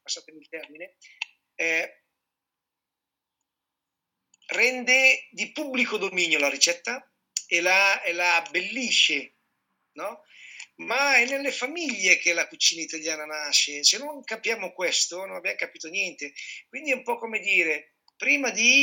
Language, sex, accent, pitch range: Italian, male, native, 170-230 Hz